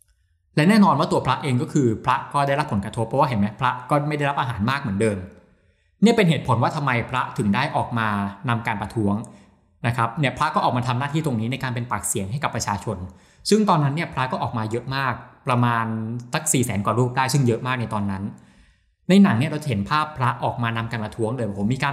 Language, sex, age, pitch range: Thai, male, 20-39, 110-145 Hz